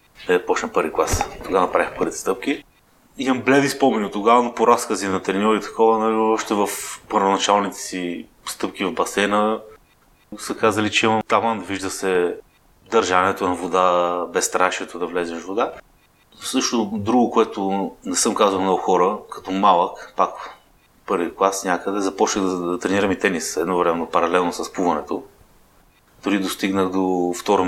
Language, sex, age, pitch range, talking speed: Bulgarian, male, 30-49, 95-120 Hz, 165 wpm